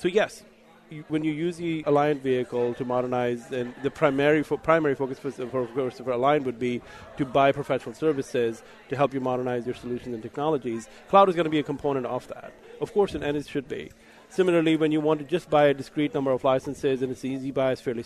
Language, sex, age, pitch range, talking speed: English, male, 30-49, 125-155 Hz, 230 wpm